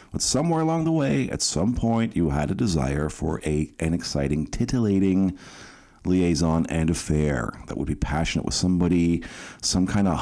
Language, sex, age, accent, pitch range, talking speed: English, male, 50-69, American, 75-95 Hz, 165 wpm